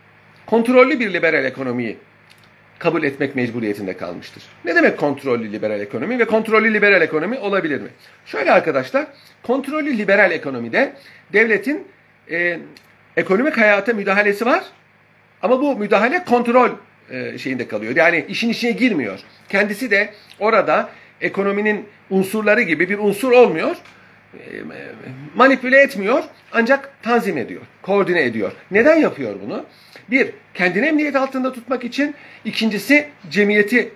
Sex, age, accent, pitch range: male, 50-69, native, 190-260 Hz